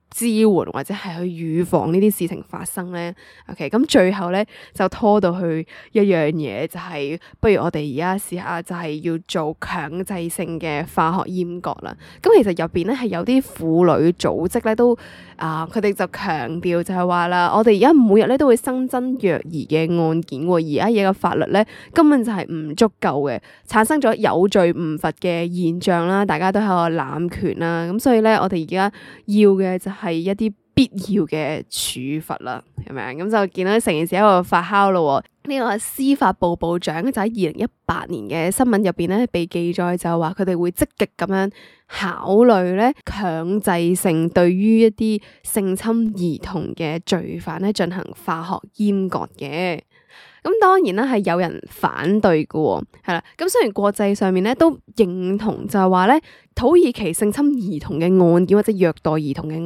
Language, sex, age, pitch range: Chinese, female, 20-39, 170-215 Hz